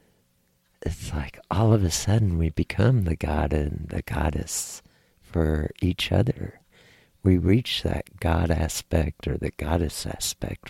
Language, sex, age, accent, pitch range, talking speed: English, male, 60-79, American, 80-105 Hz, 140 wpm